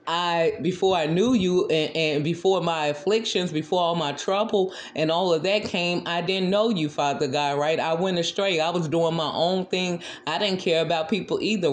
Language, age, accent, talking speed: English, 30-49, American, 210 wpm